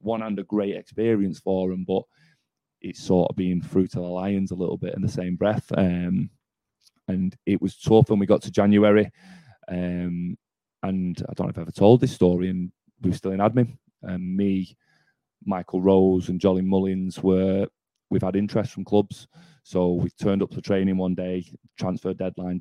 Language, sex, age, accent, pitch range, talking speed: English, male, 30-49, British, 90-105 Hz, 190 wpm